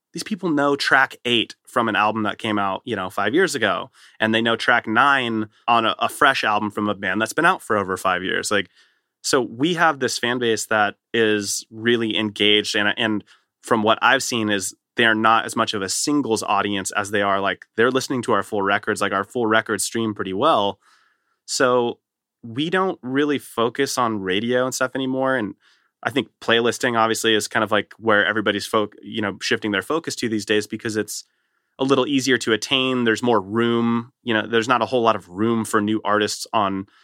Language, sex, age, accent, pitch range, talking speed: English, male, 30-49, American, 105-120 Hz, 210 wpm